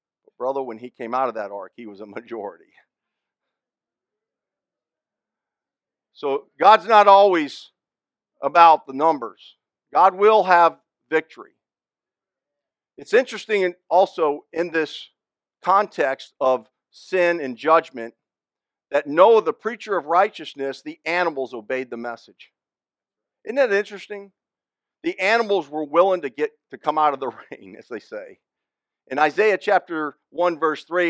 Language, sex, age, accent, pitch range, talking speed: English, male, 50-69, American, 145-205 Hz, 130 wpm